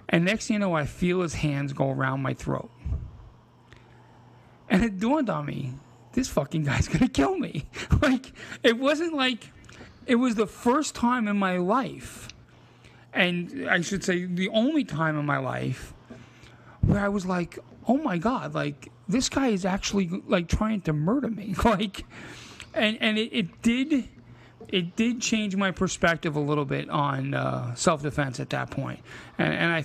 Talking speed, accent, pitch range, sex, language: 175 wpm, American, 145-210 Hz, male, English